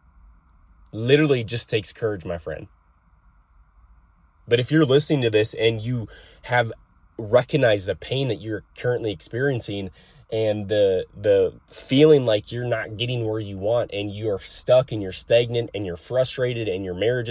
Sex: male